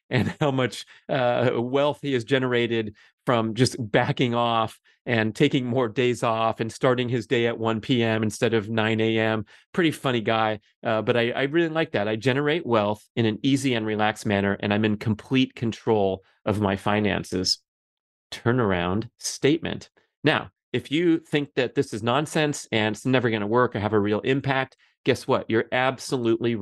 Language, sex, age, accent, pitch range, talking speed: English, male, 30-49, American, 110-130 Hz, 180 wpm